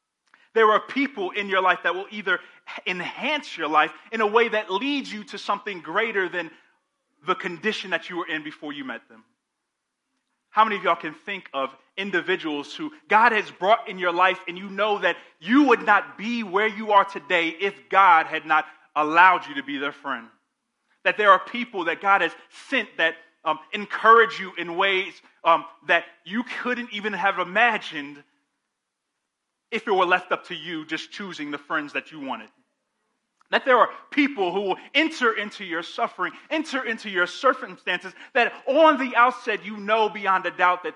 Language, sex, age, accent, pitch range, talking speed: English, male, 30-49, American, 170-225 Hz, 190 wpm